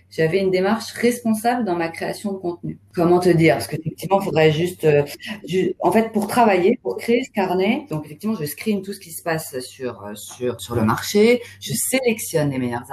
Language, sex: French, female